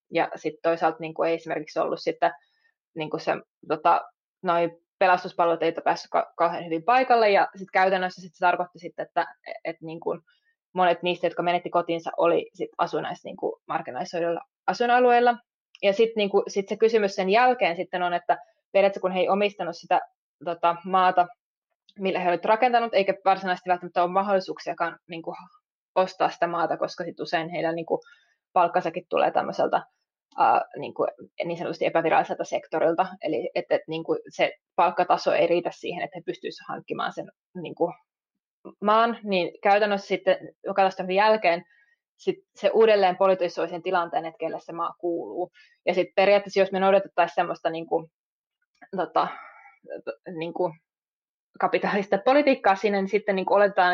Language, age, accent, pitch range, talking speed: Finnish, 20-39, native, 175-210 Hz, 150 wpm